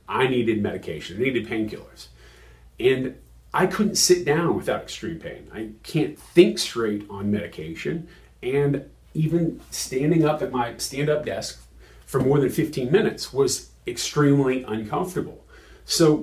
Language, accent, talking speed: English, American, 135 wpm